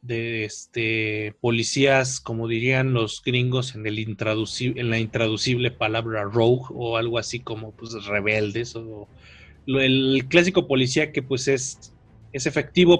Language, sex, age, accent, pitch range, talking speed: Spanish, male, 30-49, Mexican, 110-130 Hz, 145 wpm